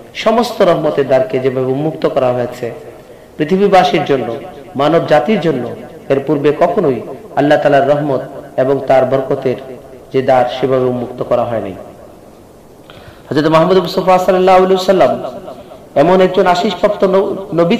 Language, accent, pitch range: Bengali, native, 135-185 Hz